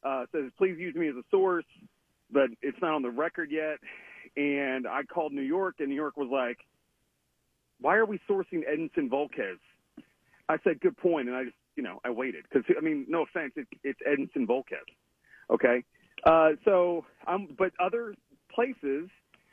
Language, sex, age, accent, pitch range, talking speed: English, male, 40-59, American, 140-205 Hz, 180 wpm